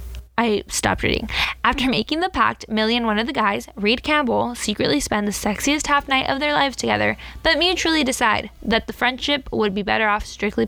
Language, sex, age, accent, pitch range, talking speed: English, female, 10-29, American, 210-265 Hz, 200 wpm